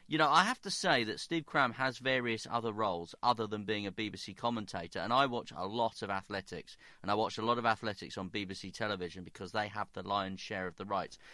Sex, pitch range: male, 100-120 Hz